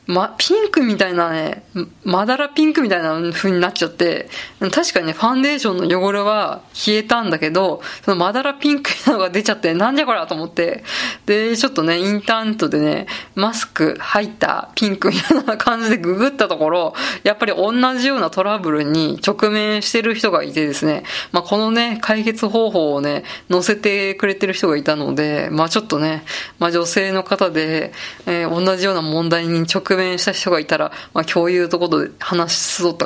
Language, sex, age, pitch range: Japanese, female, 20-39, 170-220 Hz